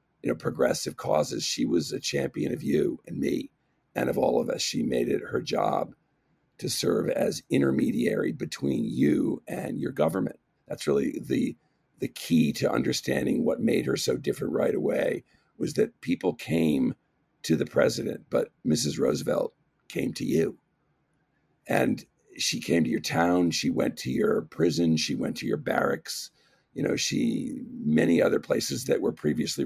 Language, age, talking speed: English, 50-69, 170 wpm